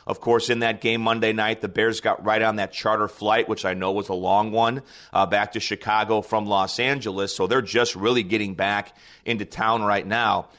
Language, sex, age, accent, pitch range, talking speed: English, male, 30-49, American, 105-125 Hz, 220 wpm